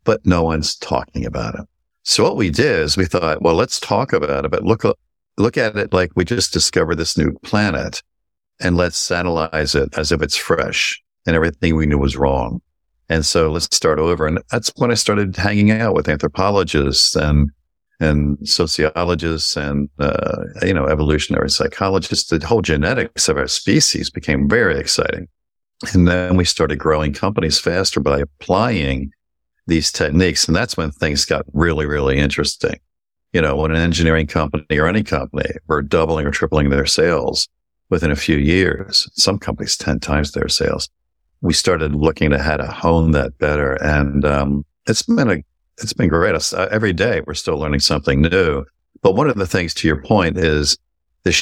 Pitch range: 75-85 Hz